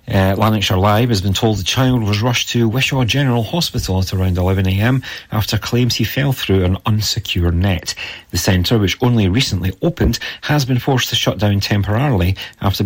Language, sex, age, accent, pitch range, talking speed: English, male, 40-59, British, 95-120 Hz, 180 wpm